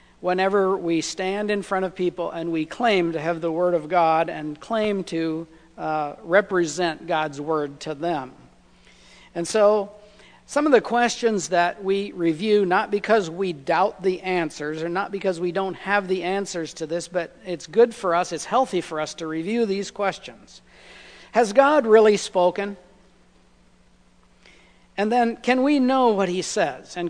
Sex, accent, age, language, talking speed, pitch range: male, American, 60-79, English, 170 wpm, 160-205 Hz